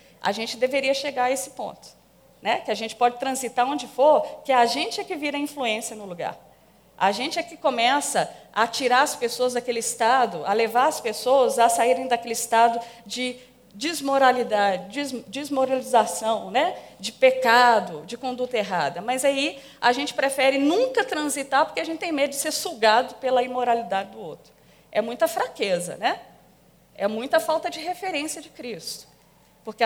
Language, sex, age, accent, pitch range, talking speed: Portuguese, female, 40-59, Brazilian, 235-295 Hz, 165 wpm